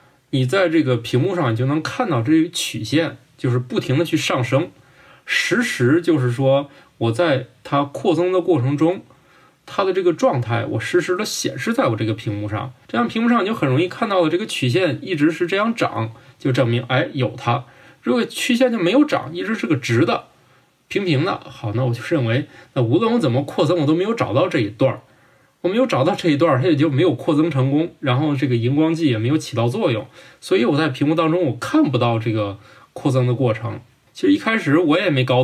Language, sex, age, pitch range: Chinese, male, 20-39, 125-170 Hz